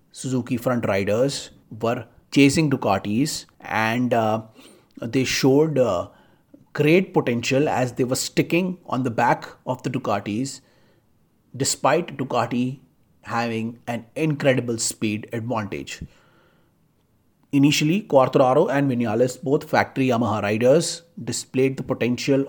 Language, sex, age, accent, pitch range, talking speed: Hindi, male, 30-49, native, 115-145 Hz, 110 wpm